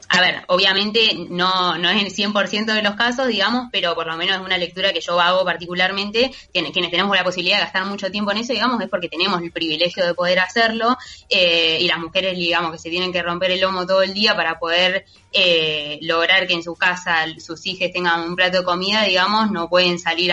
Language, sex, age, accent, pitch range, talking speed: Spanish, female, 20-39, Argentinian, 170-200 Hz, 225 wpm